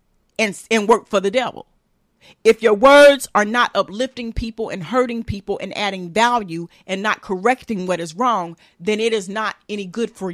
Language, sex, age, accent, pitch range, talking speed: English, female, 40-59, American, 195-235 Hz, 185 wpm